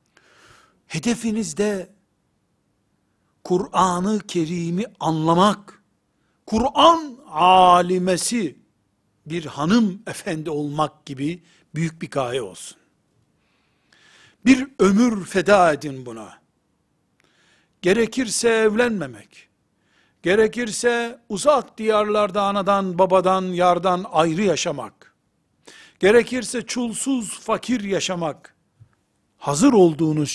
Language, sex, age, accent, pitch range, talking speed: Turkish, male, 60-79, native, 145-200 Hz, 70 wpm